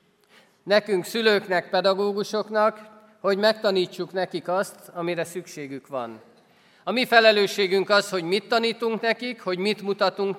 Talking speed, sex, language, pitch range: 120 wpm, male, Hungarian, 155-205 Hz